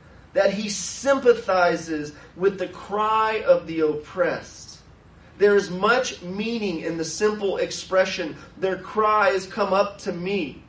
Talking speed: 135 wpm